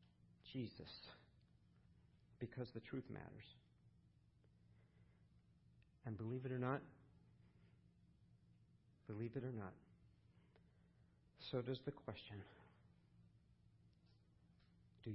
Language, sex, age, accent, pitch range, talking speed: English, male, 50-69, American, 95-125 Hz, 75 wpm